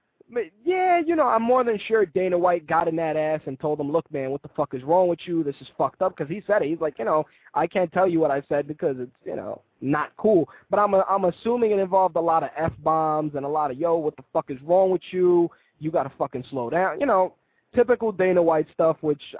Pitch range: 145-185 Hz